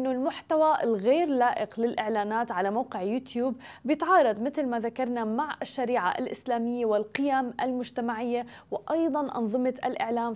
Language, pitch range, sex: Arabic, 215-265 Hz, female